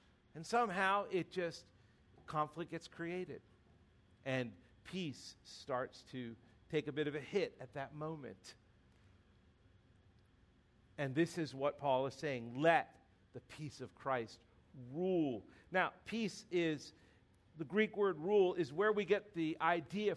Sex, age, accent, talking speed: male, 50-69, American, 135 wpm